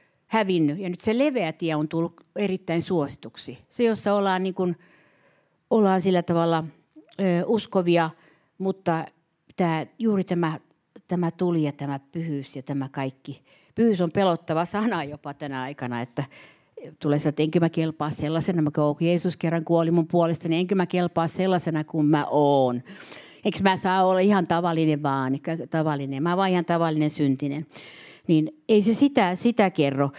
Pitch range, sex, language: 155-200 Hz, female, Finnish